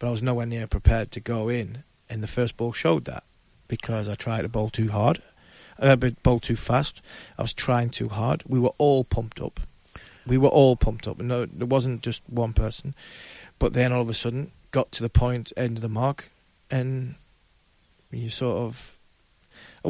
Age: 30-49